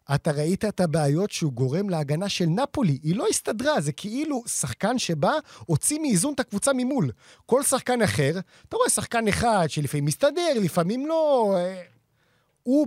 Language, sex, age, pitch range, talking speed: Hebrew, male, 30-49, 130-195 Hz, 160 wpm